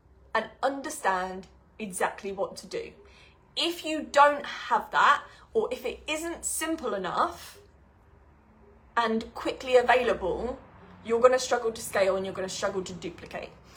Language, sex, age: English, female, 20-39